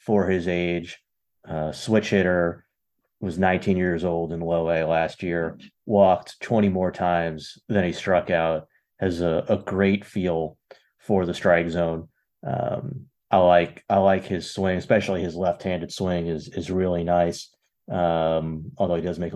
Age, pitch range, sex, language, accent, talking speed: 30-49, 85-100 Hz, male, English, American, 165 wpm